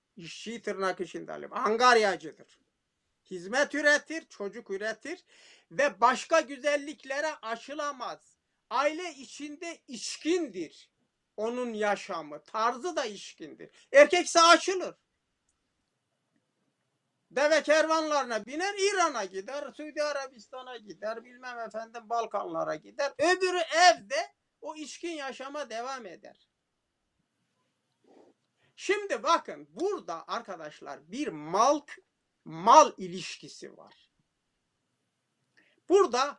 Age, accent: 60-79, native